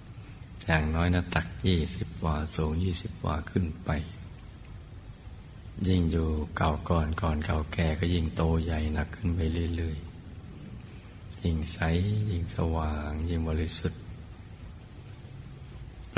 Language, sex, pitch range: Thai, male, 80-95 Hz